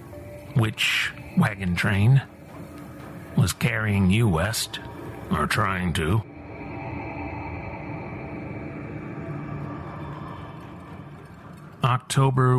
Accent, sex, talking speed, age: American, male, 50 wpm, 50-69